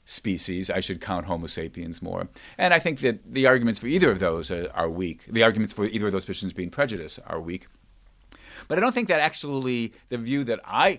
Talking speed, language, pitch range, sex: 220 wpm, English, 95-135 Hz, male